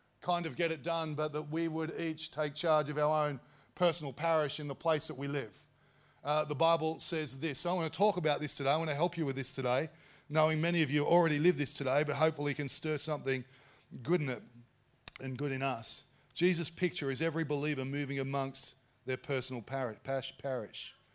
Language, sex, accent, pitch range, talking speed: English, male, Australian, 135-160 Hz, 210 wpm